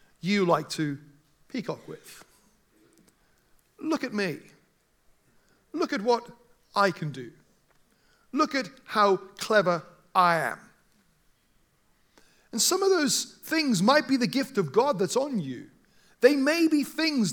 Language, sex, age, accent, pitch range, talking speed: English, male, 40-59, British, 180-255 Hz, 130 wpm